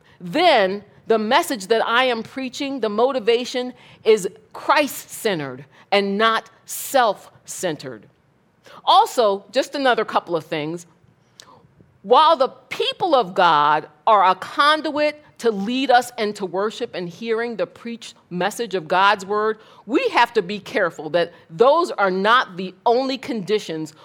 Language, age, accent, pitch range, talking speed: English, 50-69, American, 170-240 Hz, 130 wpm